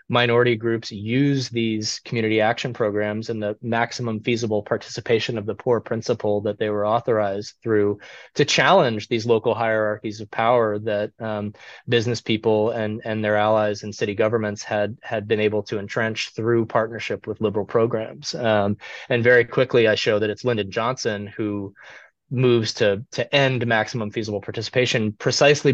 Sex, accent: male, American